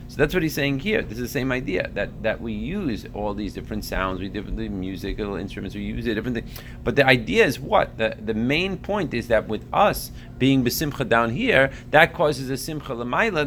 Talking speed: 220 wpm